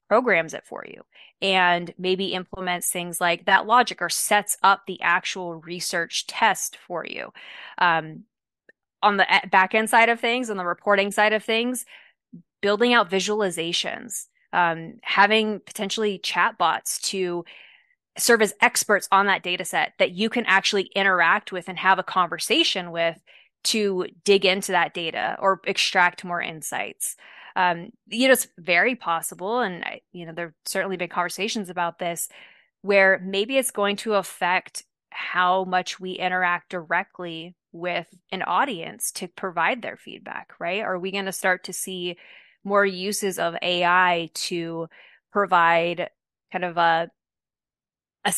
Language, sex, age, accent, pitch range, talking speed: English, female, 20-39, American, 175-200 Hz, 150 wpm